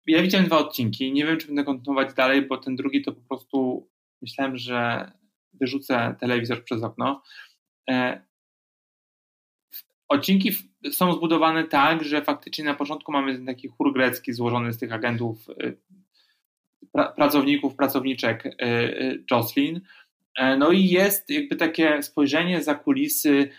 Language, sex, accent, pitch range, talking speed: Polish, male, native, 130-170 Hz, 125 wpm